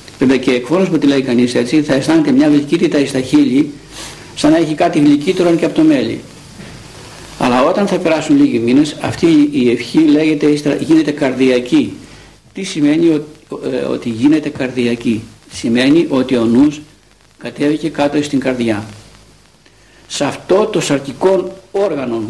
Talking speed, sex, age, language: 150 wpm, male, 60-79, Greek